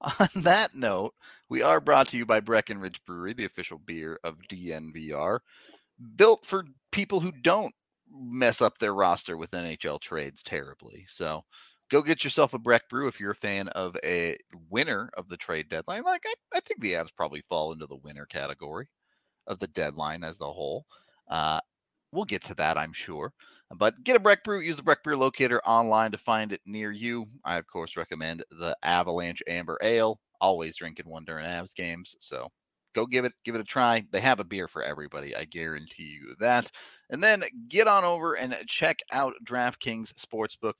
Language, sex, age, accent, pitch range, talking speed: English, male, 30-49, American, 95-150 Hz, 190 wpm